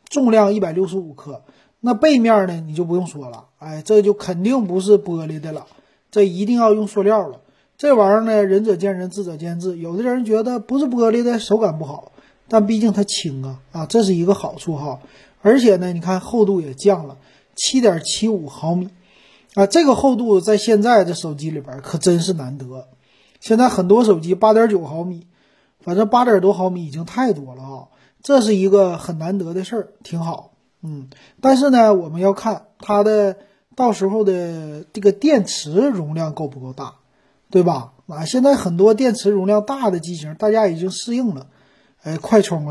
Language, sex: Chinese, male